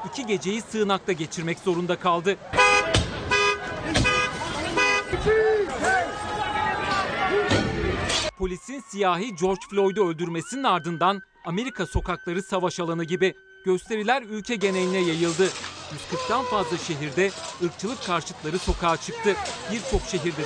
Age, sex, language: 40-59, male, Turkish